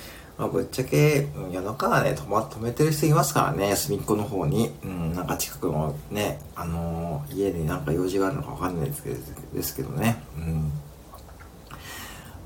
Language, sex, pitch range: Japanese, male, 75-95 Hz